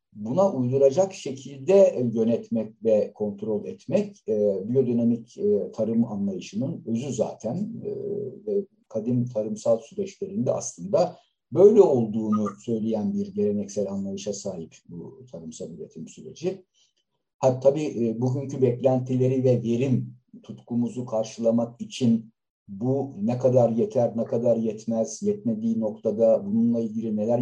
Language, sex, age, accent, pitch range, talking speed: Turkish, male, 60-79, native, 115-185 Hz, 115 wpm